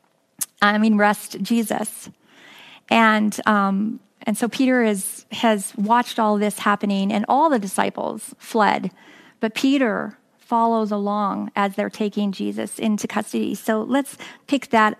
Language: English